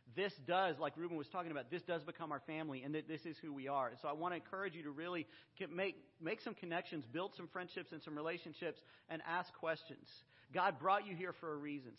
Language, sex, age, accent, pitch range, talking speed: English, male, 40-59, American, 155-195 Hz, 240 wpm